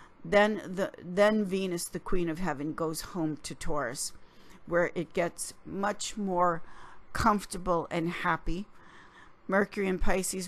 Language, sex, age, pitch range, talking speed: English, female, 50-69, 170-200 Hz, 130 wpm